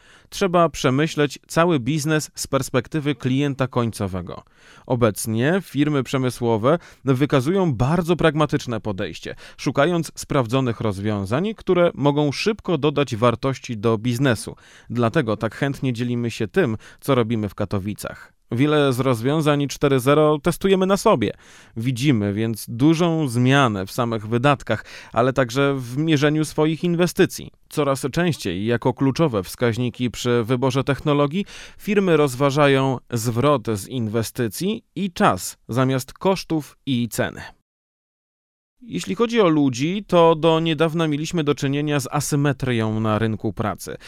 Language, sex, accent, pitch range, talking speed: Polish, male, native, 120-155 Hz, 120 wpm